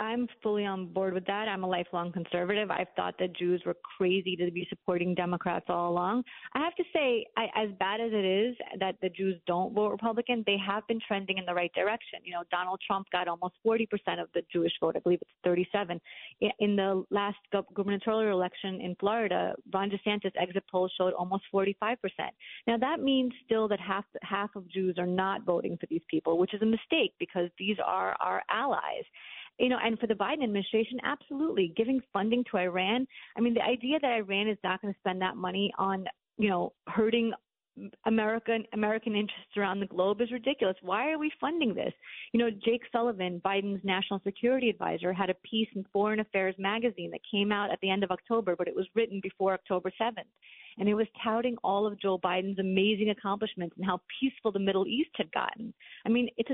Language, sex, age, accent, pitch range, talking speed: English, female, 30-49, American, 185-225 Hz, 205 wpm